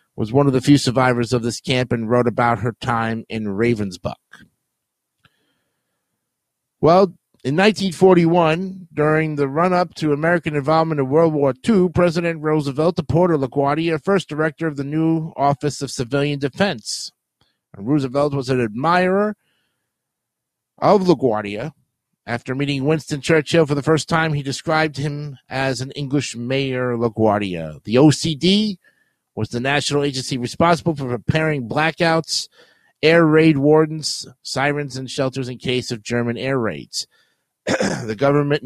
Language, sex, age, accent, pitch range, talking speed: English, male, 50-69, American, 125-160 Hz, 135 wpm